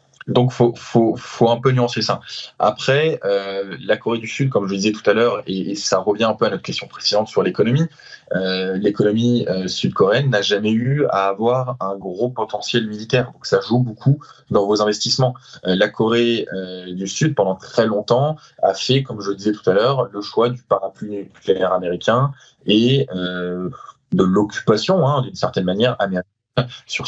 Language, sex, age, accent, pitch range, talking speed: French, male, 20-39, French, 95-125 Hz, 195 wpm